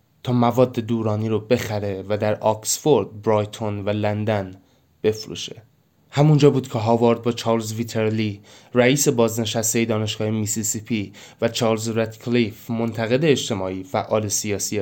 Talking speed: 120 wpm